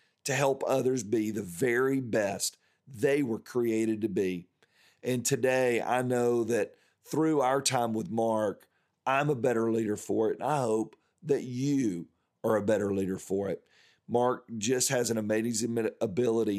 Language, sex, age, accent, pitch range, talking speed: English, male, 40-59, American, 105-125 Hz, 165 wpm